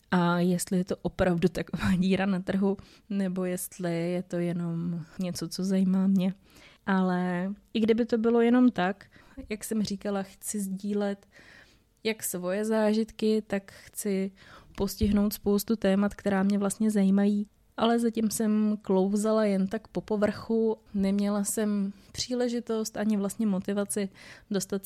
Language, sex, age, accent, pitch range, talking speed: Czech, female, 20-39, native, 190-215 Hz, 140 wpm